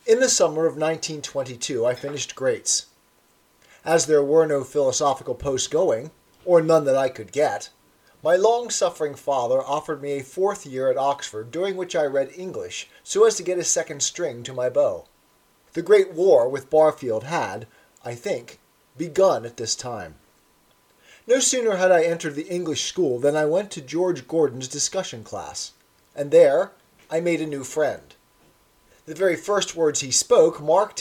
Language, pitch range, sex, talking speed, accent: English, 145-195 Hz, male, 170 wpm, American